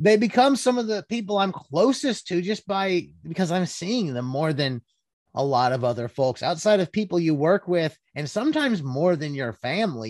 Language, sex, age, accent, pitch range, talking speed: English, male, 30-49, American, 140-200 Hz, 200 wpm